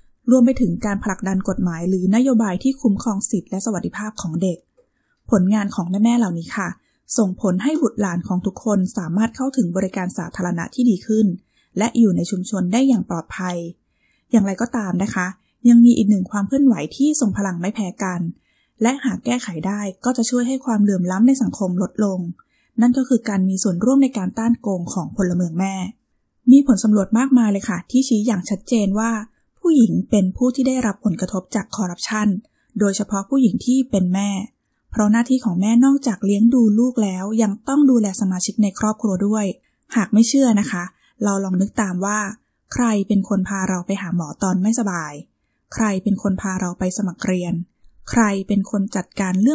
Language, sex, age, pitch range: Thai, female, 20-39, 190-230 Hz